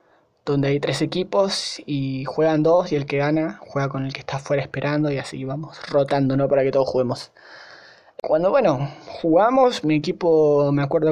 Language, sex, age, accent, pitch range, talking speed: Spanish, male, 20-39, Argentinian, 145-180 Hz, 185 wpm